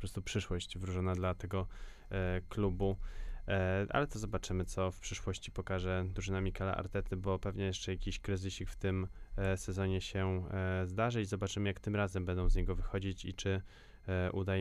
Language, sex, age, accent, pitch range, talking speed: Polish, male, 20-39, native, 95-105 Hz, 175 wpm